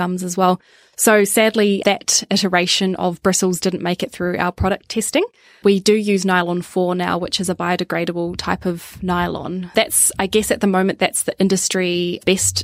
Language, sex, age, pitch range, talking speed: English, female, 10-29, 175-195 Hz, 185 wpm